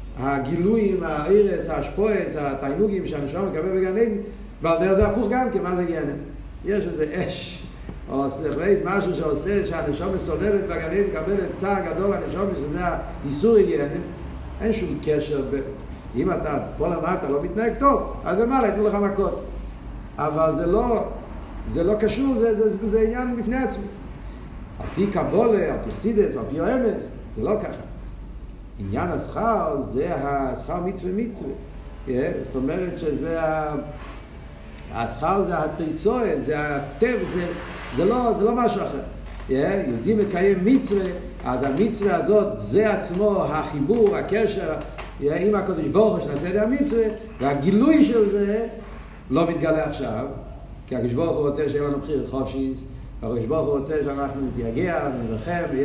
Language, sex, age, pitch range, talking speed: Hebrew, male, 50-69, 145-210 Hz, 145 wpm